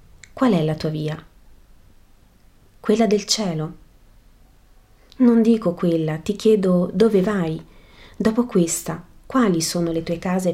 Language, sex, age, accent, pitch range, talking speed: Italian, female, 30-49, native, 160-195 Hz, 125 wpm